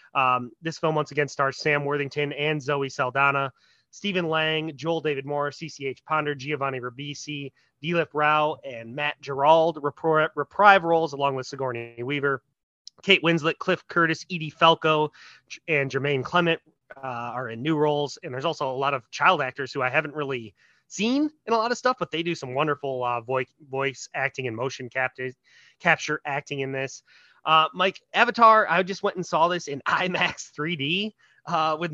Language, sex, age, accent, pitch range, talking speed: English, male, 30-49, American, 135-175 Hz, 170 wpm